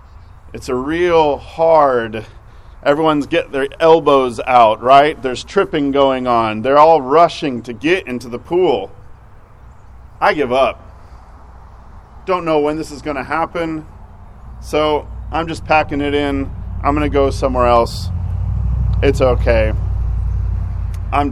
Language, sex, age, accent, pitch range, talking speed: English, male, 40-59, American, 95-155 Hz, 135 wpm